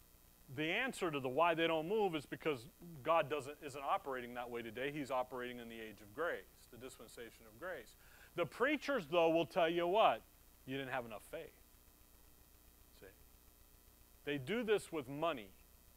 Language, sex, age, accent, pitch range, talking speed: English, male, 40-59, American, 130-190 Hz, 175 wpm